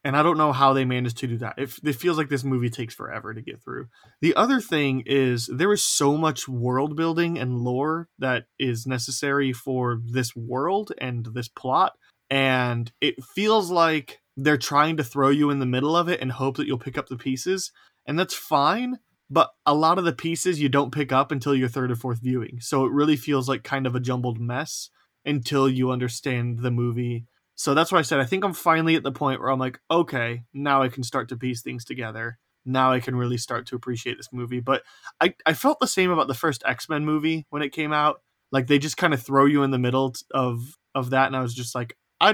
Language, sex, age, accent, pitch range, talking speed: English, male, 20-39, American, 125-150 Hz, 235 wpm